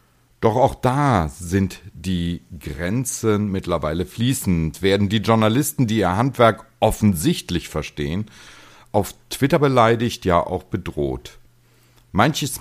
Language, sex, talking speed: German, male, 110 wpm